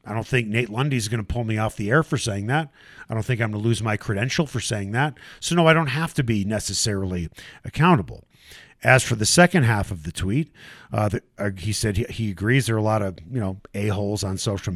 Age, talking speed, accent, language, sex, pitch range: 40-59, 250 wpm, American, English, male, 110-150 Hz